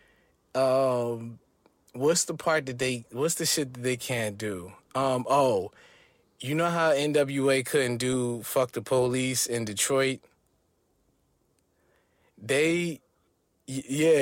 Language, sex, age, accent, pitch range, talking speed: English, male, 20-39, American, 120-155 Hz, 120 wpm